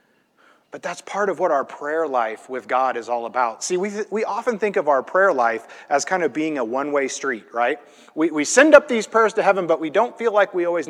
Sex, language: male, English